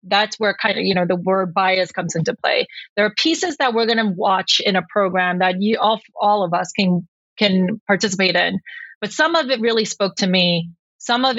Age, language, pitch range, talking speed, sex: 30-49, English, 185-225 Hz, 220 wpm, female